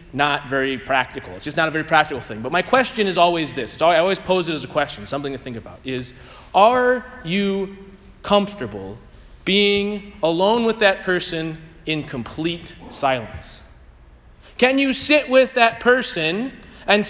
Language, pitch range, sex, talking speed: English, 155-245 Hz, male, 160 wpm